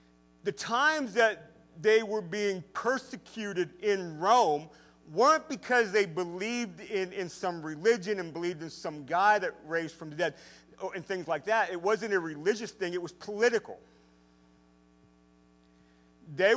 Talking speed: 145 wpm